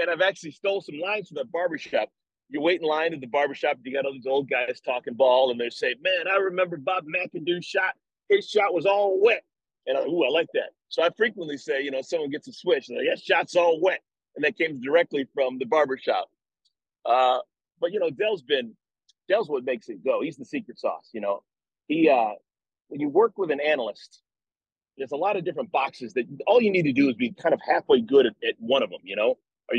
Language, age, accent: English, 40-59, American